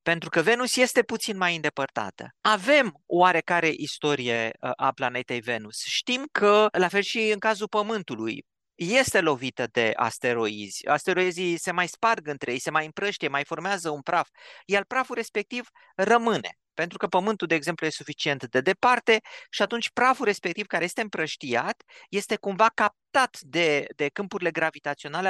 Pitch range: 145-220 Hz